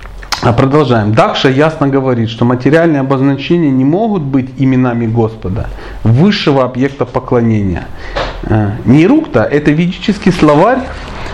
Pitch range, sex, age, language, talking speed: 120-155 Hz, male, 40-59, Russian, 100 wpm